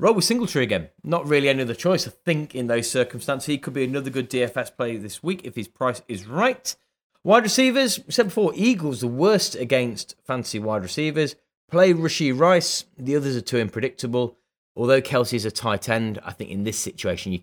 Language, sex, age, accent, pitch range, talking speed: English, male, 30-49, British, 105-165 Hz, 205 wpm